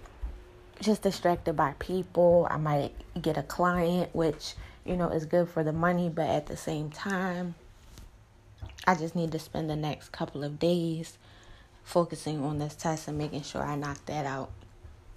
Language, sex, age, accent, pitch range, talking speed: English, female, 20-39, American, 145-175 Hz, 170 wpm